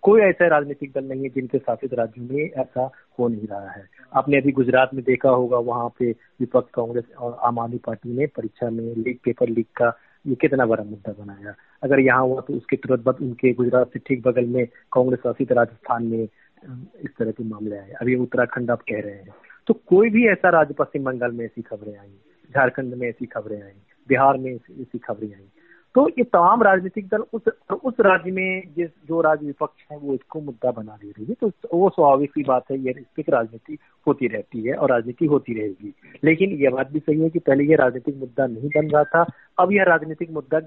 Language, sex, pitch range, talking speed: Hindi, male, 120-160 Hz, 215 wpm